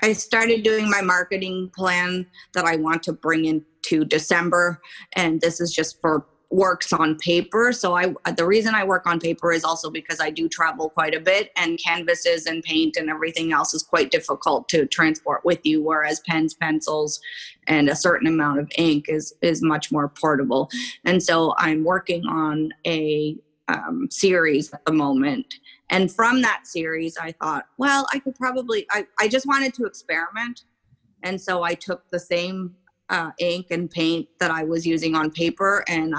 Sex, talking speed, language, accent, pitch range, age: female, 180 wpm, English, American, 160-190 Hz, 30-49